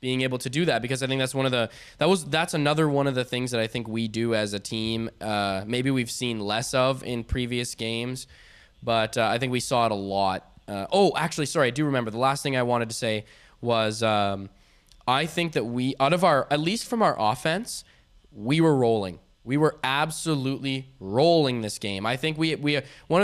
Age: 10-29